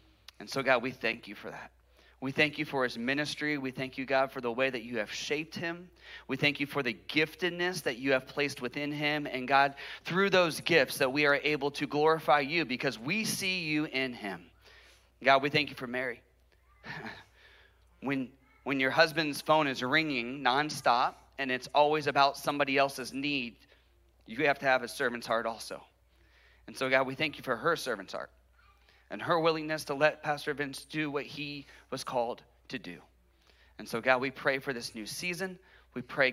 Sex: male